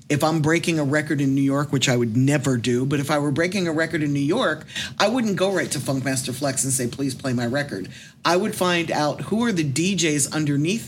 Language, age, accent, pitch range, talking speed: English, 50-69, American, 135-160 Hz, 250 wpm